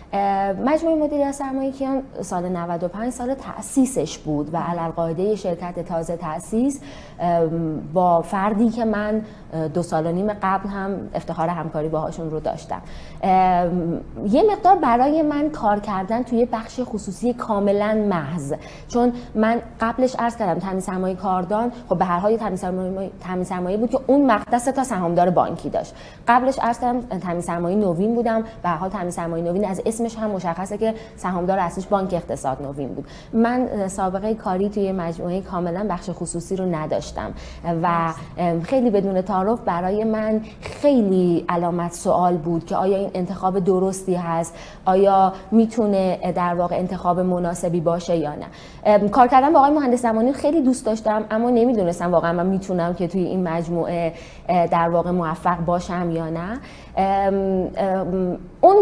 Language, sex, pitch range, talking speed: Persian, female, 175-225 Hz, 145 wpm